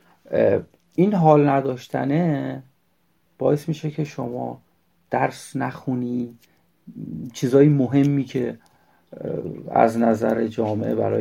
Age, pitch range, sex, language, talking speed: 40-59, 110-140 Hz, male, Persian, 85 wpm